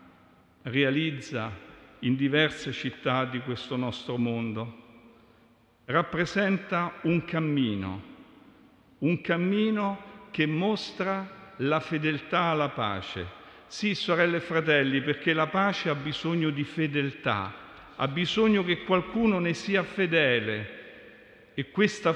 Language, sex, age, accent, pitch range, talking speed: Italian, male, 50-69, native, 130-170 Hz, 105 wpm